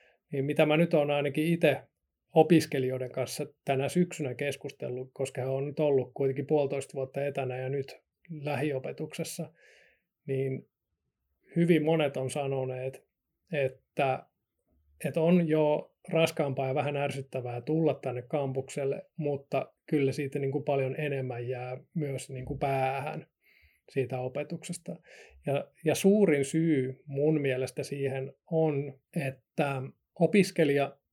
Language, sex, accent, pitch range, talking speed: Finnish, male, native, 135-155 Hz, 115 wpm